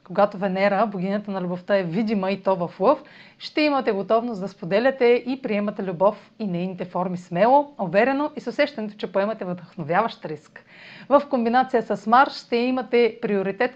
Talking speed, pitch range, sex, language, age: 165 wpm, 185-240 Hz, female, Bulgarian, 30-49